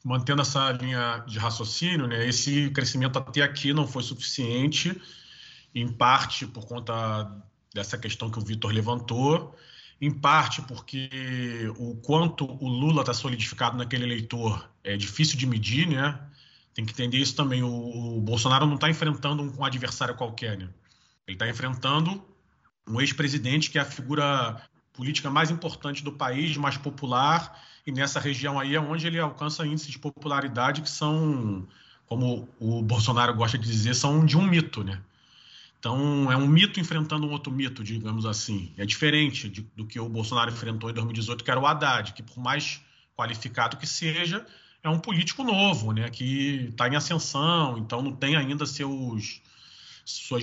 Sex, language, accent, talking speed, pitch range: male, Portuguese, Brazilian, 160 wpm, 115-145 Hz